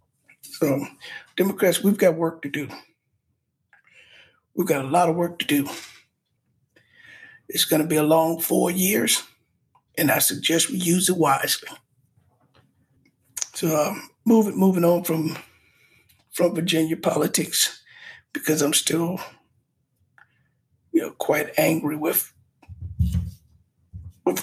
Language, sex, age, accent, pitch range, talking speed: English, male, 60-79, American, 150-185 Hz, 115 wpm